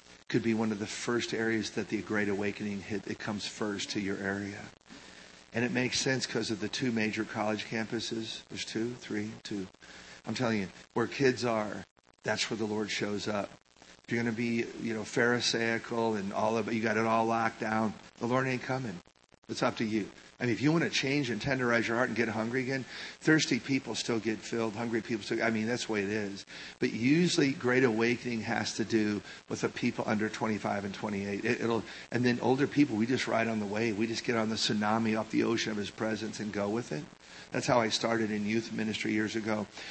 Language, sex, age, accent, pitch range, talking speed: English, male, 50-69, American, 105-120 Hz, 230 wpm